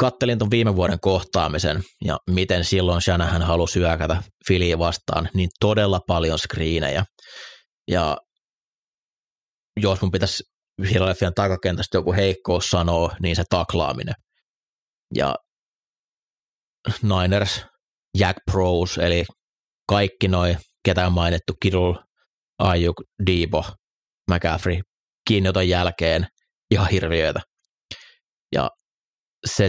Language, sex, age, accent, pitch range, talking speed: Finnish, male, 30-49, native, 85-100 Hz, 95 wpm